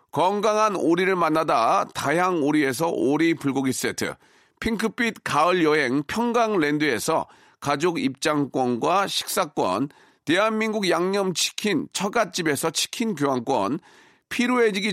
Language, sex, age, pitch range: Korean, male, 40-59, 155-205 Hz